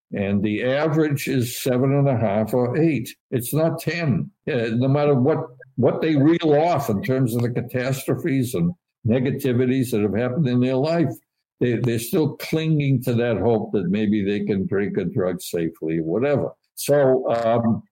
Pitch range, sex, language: 115-150 Hz, male, English